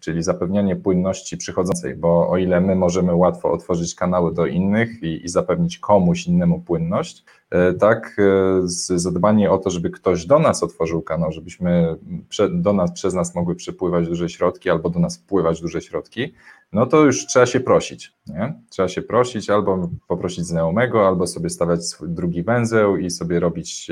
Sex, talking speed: male, 175 wpm